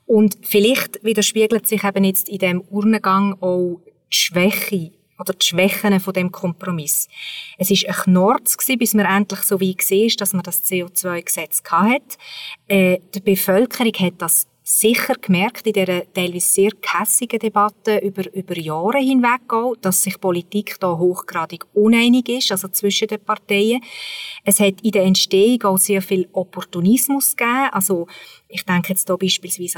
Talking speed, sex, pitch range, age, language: 155 wpm, female, 190-230 Hz, 30-49, German